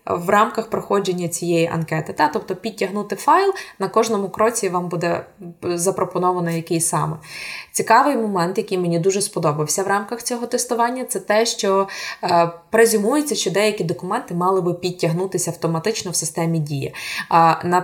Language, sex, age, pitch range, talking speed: Ukrainian, female, 20-39, 170-215 Hz, 150 wpm